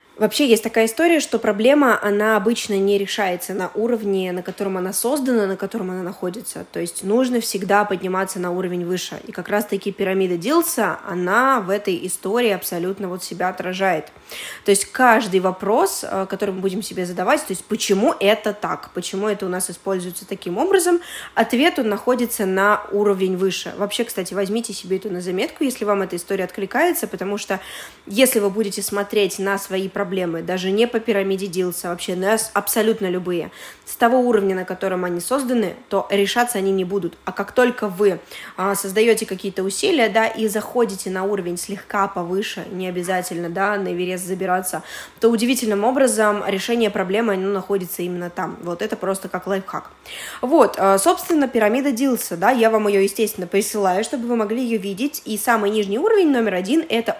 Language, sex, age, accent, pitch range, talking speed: Russian, female, 20-39, native, 190-225 Hz, 170 wpm